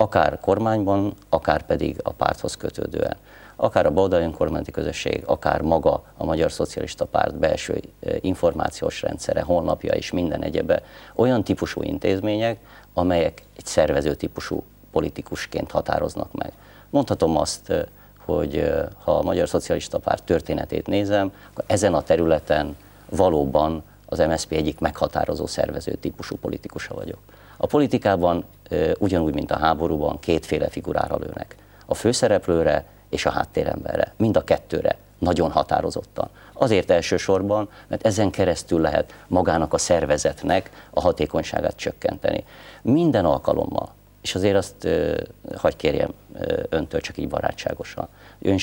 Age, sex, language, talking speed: 50-69, male, Hungarian, 125 wpm